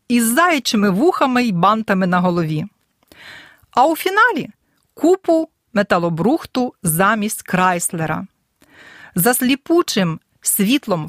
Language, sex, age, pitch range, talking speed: Ukrainian, female, 40-59, 185-265 Hz, 90 wpm